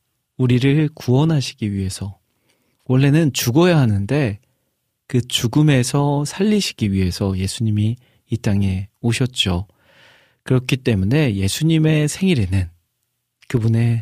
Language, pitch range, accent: Korean, 100-135 Hz, native